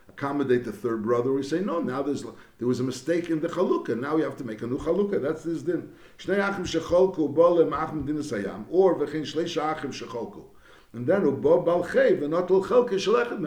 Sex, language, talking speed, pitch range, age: male, English, 135 wpm, 135-175 Hz, 60-79